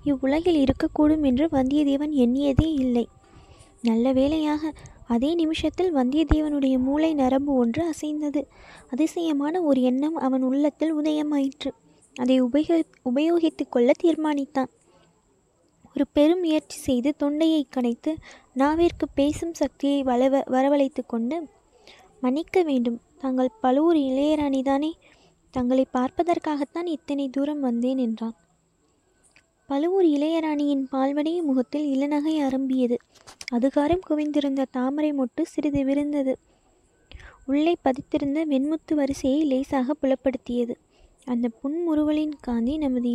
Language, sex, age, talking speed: Tamil, female, 20-39, 95 wpm